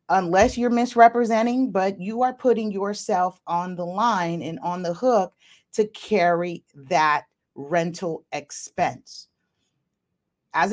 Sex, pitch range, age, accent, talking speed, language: female, 160-220 Hz, 30-49, American, 120 wpm, English